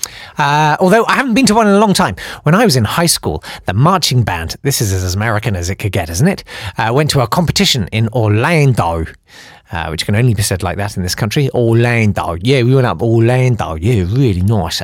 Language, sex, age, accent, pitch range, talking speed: English, male, 40-59, British, 110-165 Hz, 230 wpm